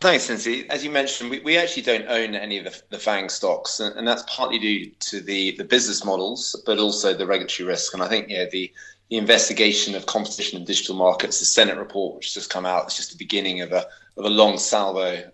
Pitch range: 100-120 Hz